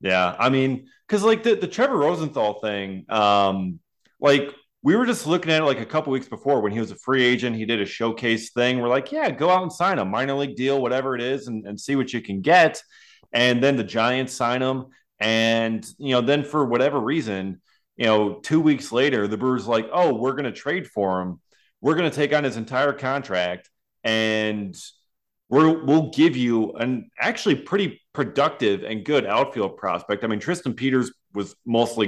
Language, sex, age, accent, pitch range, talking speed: English, male, 30-49, American, 110-155 Hz, 205 wpm